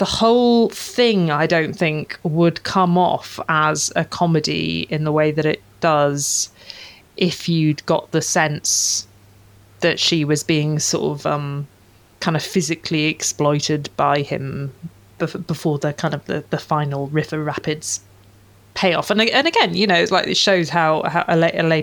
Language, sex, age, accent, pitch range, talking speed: English, female, 30-49, British, 140-165 Hz, 160 wpm